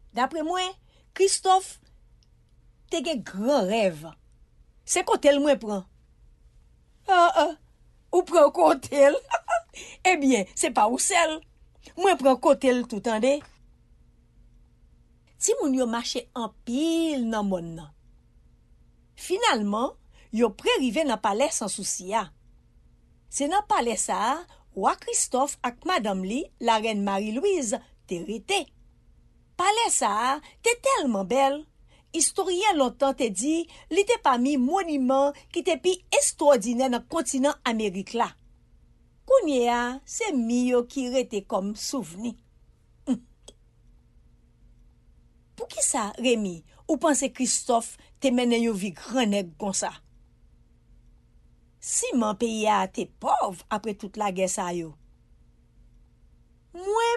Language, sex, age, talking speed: English, female, 50-69, 115 wpm